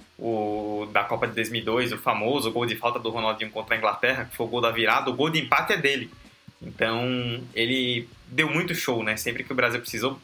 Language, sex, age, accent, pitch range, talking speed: Portuguese, male, 20-39, Brazilian, 115-135 Hz, 230 wpm